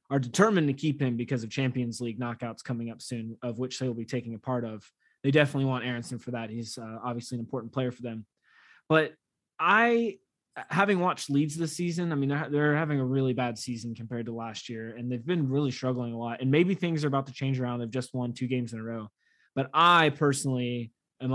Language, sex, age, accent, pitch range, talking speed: English, male, 20-39, American, 120-145 Hz, 235 wpm